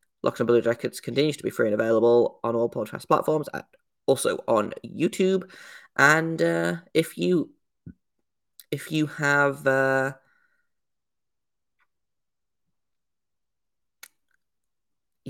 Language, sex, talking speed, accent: English, male, 100 wpm, British